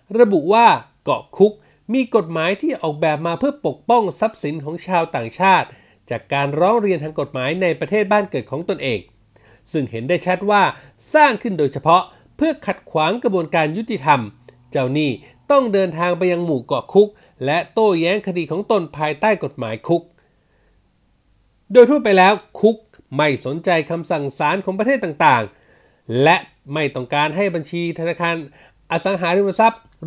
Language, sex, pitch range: Thai, male, 150-210 Hz